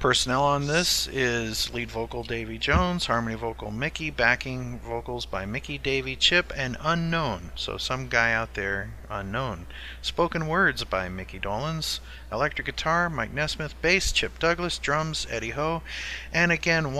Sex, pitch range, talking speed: male, 105-145 Hz, 150 wpm